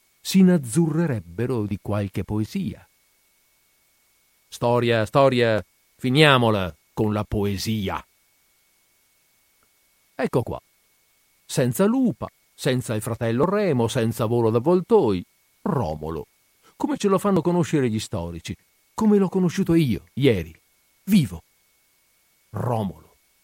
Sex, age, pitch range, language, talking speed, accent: male, 50-69, 95-130 Hz, Italian, 95 wpm, native